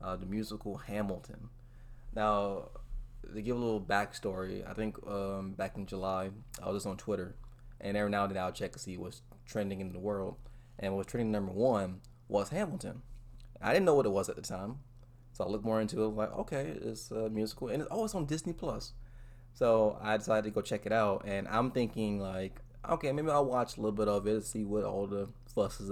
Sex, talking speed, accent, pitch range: male, 225 wpm, American, 100-120 Hz